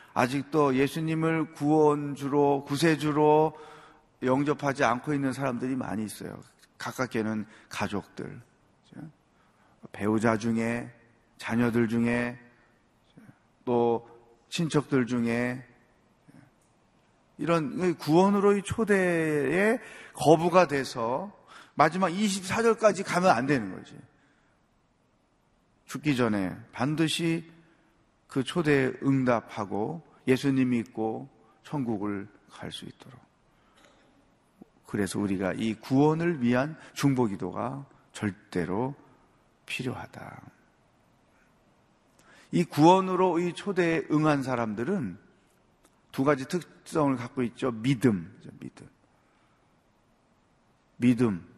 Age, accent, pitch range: 40-59, native, 120-160 Hz